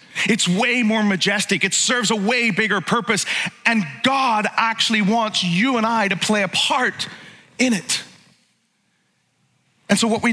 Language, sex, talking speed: English, male, 155 wpm